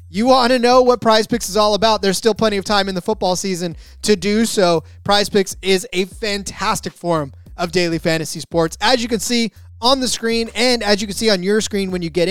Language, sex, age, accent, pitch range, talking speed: English, male, 20-39, American, 175-220 Hz, 235 wpm